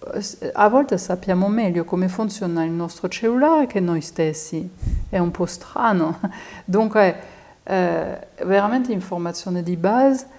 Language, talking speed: Italian, 125 wpm